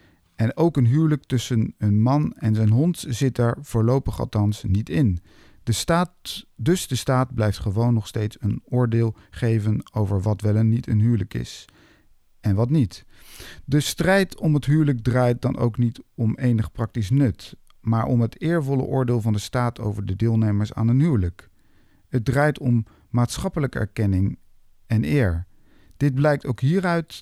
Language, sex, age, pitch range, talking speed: Dutch, male, 50-69, 105-135 Hz, 165 wpm